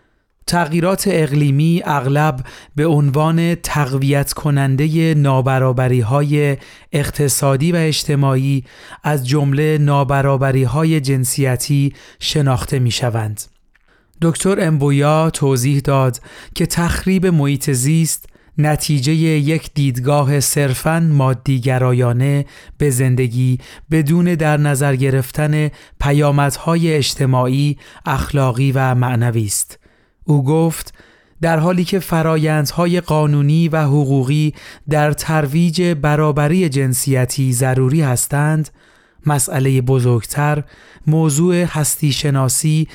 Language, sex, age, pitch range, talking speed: Persian, male, 30-49, 135-155 Hz, 90 wpm